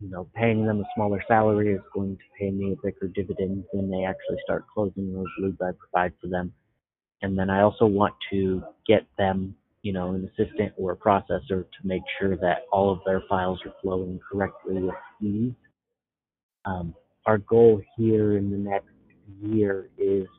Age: 30-49